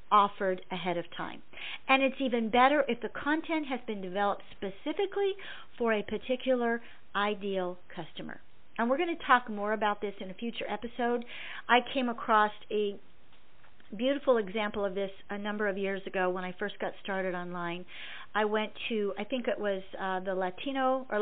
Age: 50-69